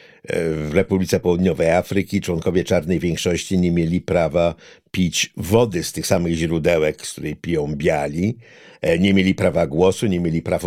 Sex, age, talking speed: male, 60-79, 150 wpm